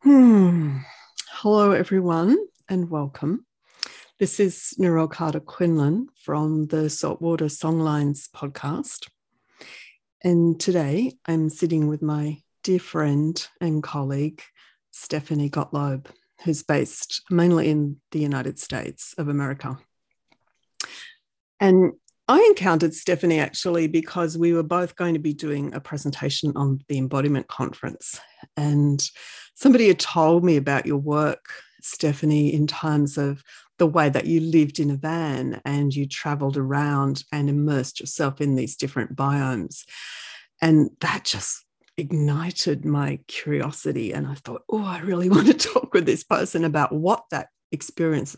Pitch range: 145-170 Hz